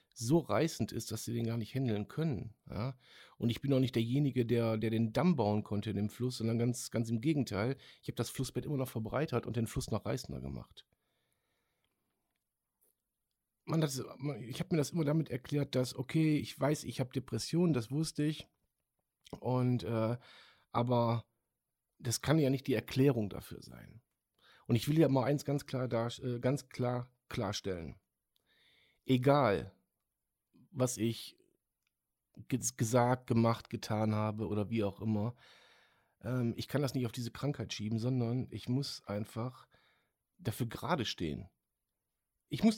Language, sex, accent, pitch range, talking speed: German, male, German, 115-140 Hz, 165 wpm